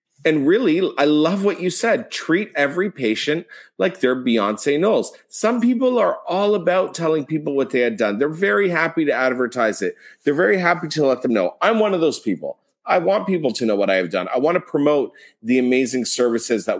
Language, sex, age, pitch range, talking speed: English, male, 30-49, 120-185 Hz, 215 wpm